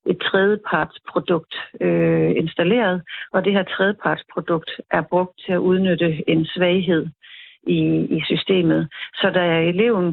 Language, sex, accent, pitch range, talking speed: Danish, female, native, 160-190 Hz, 120 wpm